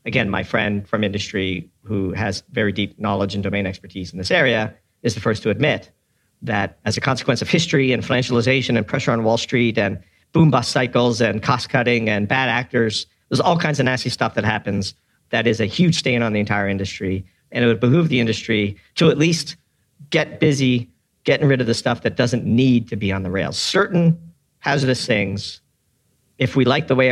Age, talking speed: 50-69, 200 wpm